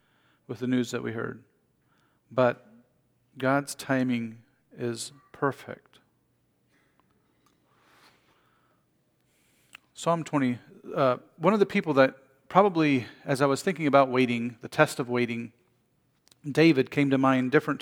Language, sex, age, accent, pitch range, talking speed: English, male, 40-59, American, 130-160 Hz, 120 wpm